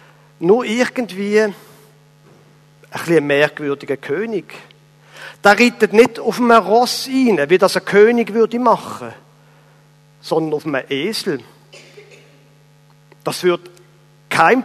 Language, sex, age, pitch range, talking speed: German, male, 50-69, 145-215 Hz, 110 wpm